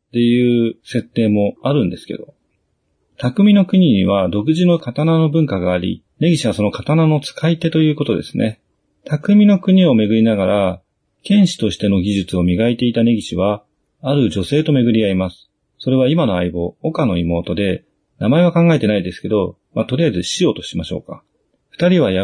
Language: Japanese